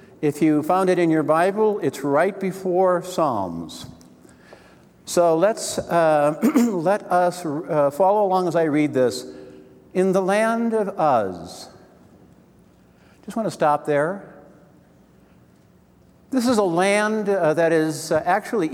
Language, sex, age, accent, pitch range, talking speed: English, male, 60-79, American, 155-210 Hz, 135 wpm